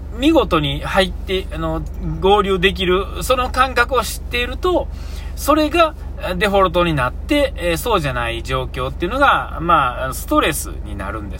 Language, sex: Japanese, male